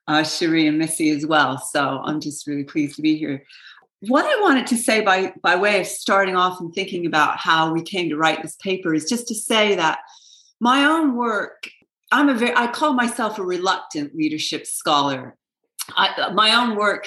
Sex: female